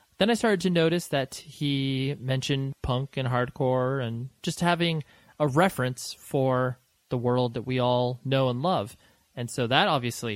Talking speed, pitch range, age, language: 170 wpm, 115-145 Hz, 30-49, English